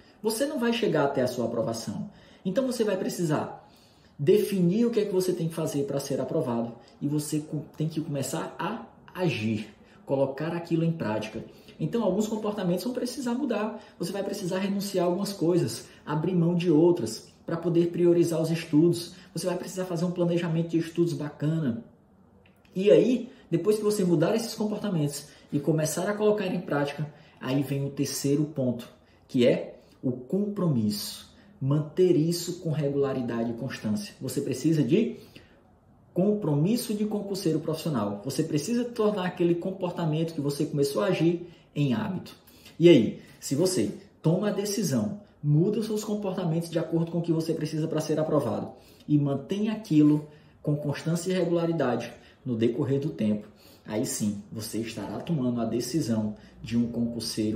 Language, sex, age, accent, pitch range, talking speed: Portuguese, male, 20-39, Brazilian, 140-190 Hz, 160 wpm